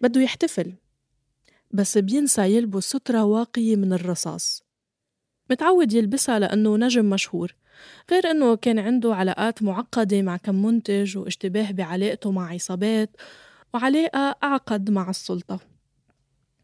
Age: 20-39